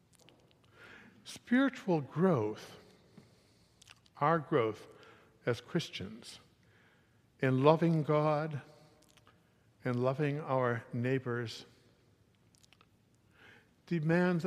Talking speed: 60 wpm